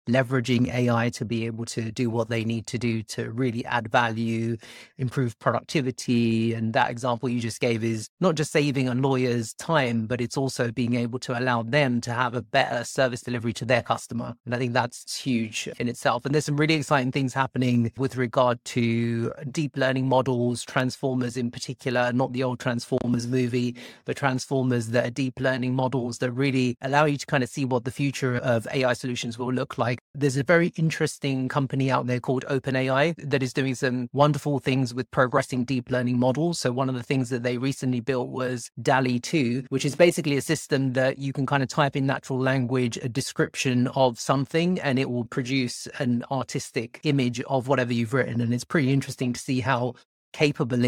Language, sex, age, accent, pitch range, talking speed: English, male, 30-49, British, 120-135 Hz, 200 wpm